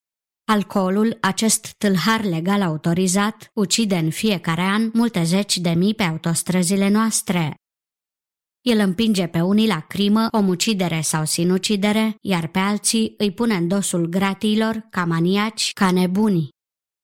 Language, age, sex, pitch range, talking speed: Romanian, 20-39, male, 180-220 Hz, 130 wpm